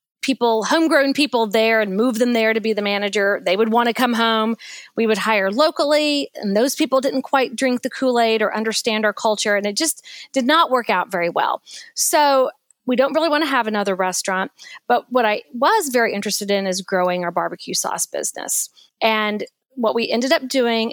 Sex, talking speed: female, 205 wpm